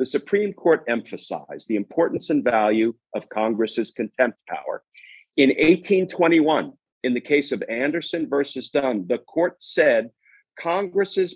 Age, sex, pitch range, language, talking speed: 50-69, male, 115-185 Hz, English, 130 wpm